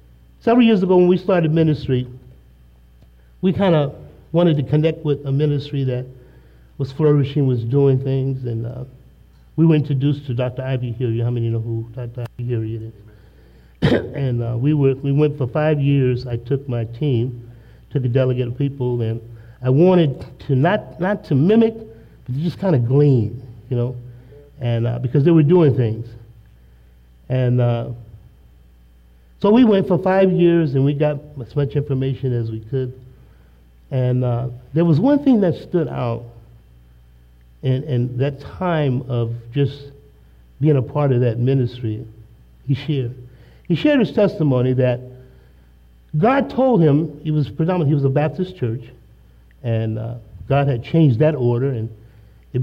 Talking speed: 165 wpm